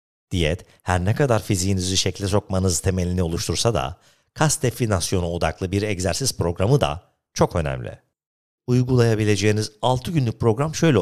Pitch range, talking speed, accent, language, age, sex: 90-125 Hz, 130 wpm, native, Turkish, 50-69, male